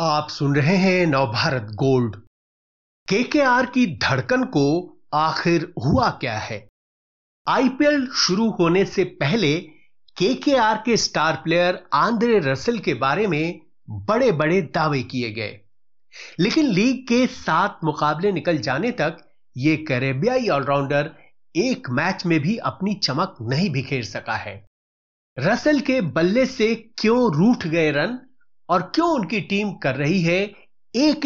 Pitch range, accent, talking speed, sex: 135-220 Hz, native, 135 wpm, male